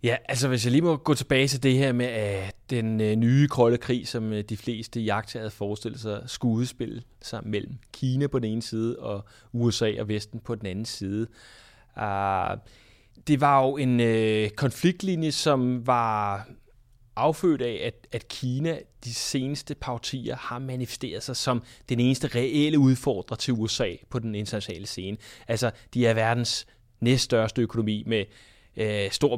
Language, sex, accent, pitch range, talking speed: Danish, male, native, 110-130 Hz, 155 wpm